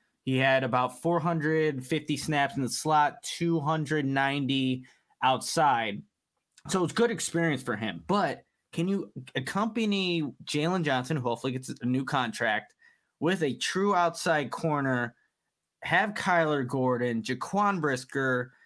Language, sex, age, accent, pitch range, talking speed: English, male, 20-39, American, 130-160 Hz, 135 wpm